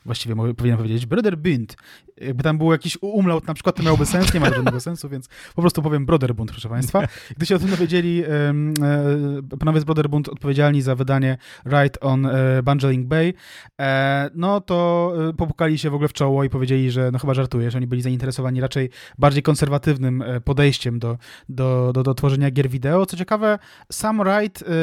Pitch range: 130-160 Hz